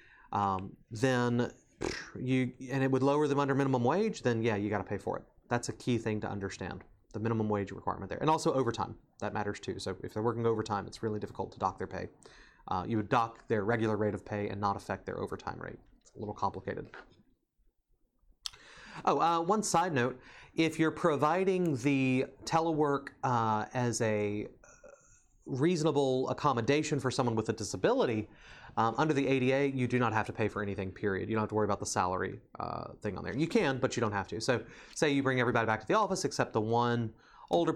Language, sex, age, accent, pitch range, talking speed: English, male, 30-49, American, 105-135 Hz, 210 wpm